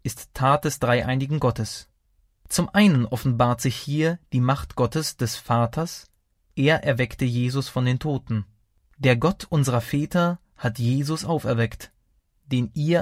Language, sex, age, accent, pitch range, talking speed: German, male, 20-39, German, 115-150 Hz, 140 wpm